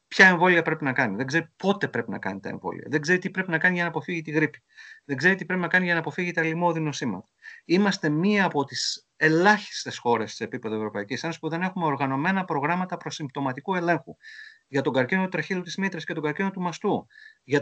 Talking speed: 220 wpm